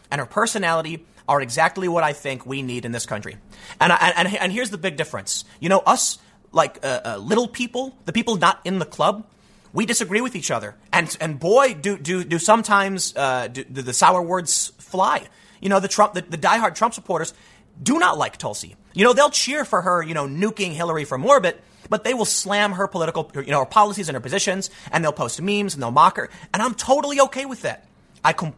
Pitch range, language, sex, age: 150-215 Hz, English, male, 30-49